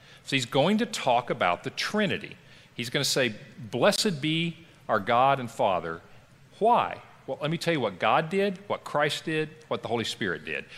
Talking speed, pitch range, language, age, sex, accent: 195 wpm, 115-160 Hz, English, 50-69, male, American